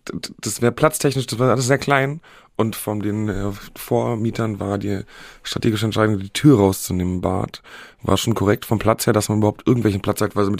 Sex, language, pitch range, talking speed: male, German, 95-120 Hz, 205 wpm